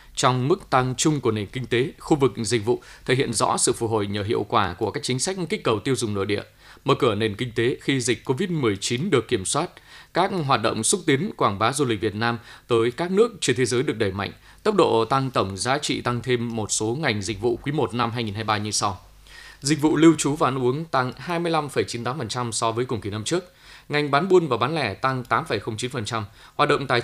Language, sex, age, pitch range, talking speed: Vietnamese, male, 20-39, 115-135 Hz, 235 wpm